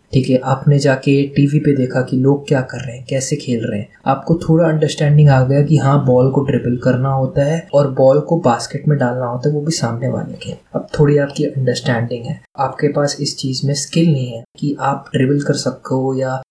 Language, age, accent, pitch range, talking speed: Hindi, 20-39, native, 130-150 Hz, 225 wpm